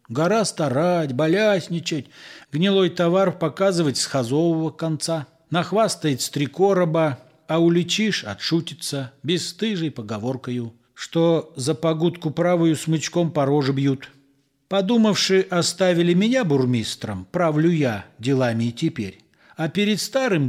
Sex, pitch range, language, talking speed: male, 140-185 Hz, Russian, 110 wpm